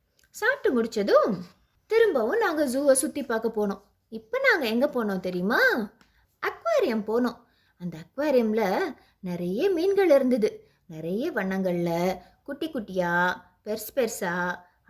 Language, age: Tamil, 20-39